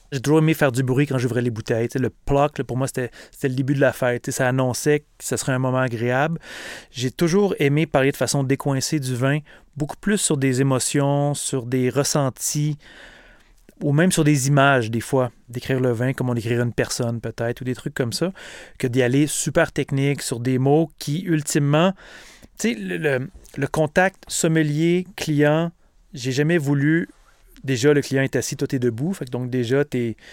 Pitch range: 130-155 Hz